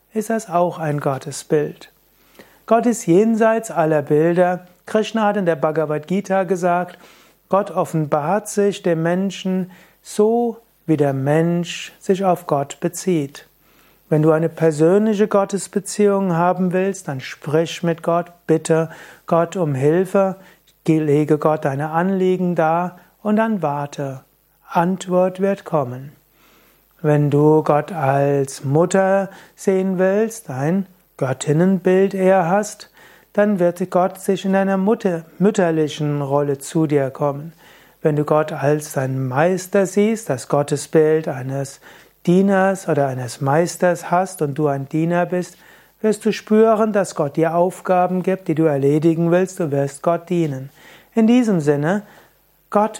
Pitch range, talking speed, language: 155-195 Hz, 135 wpm, German